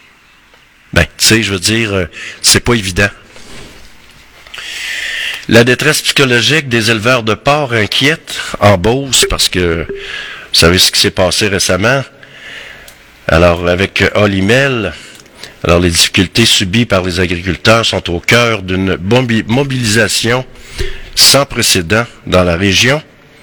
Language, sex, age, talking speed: French, male, 50-69, 125 wpm